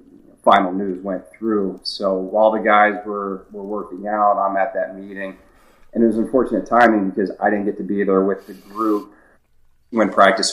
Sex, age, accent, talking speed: male, 30-49, American, 190 wpm